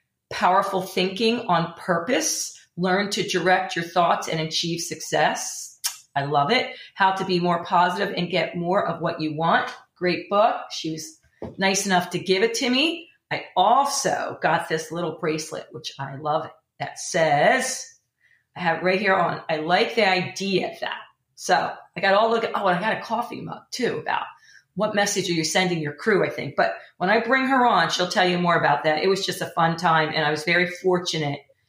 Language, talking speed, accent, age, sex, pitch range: English, 205 wpm, American, 40-59, female, 165-200 Hz